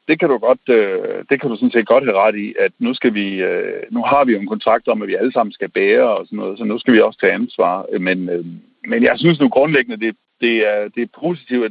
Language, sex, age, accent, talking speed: Danish, male, 60-79, native, 265 wpm